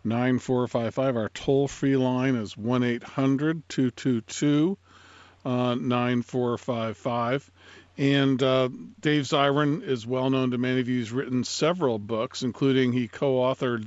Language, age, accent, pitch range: English, 50-69, American, 120-140 Hz